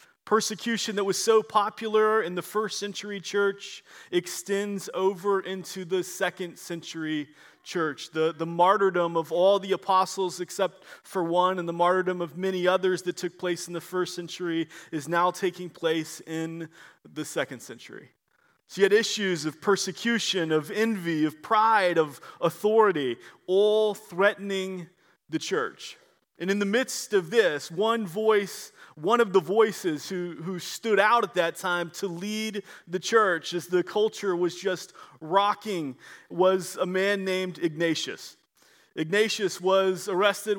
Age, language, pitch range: 30-49, English, 175-205 Hz